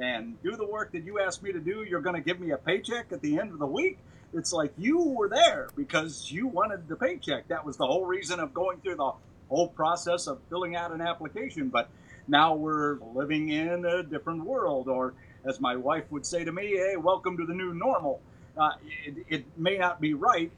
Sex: male